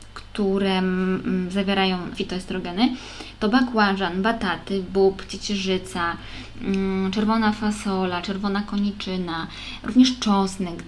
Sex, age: female, 20-39